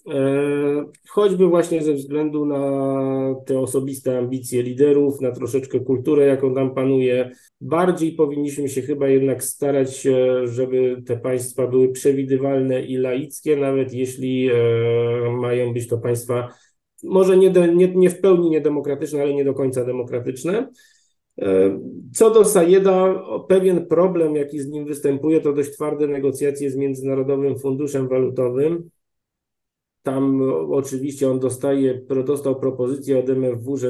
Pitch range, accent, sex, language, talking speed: 125-145 Hz, native, male, Polish, 125 wpm